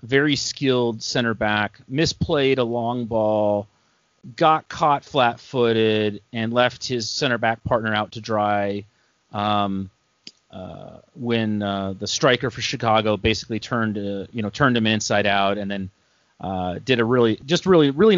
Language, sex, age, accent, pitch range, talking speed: English, male, 30-49, American, 105-130 Hz, 150 wpm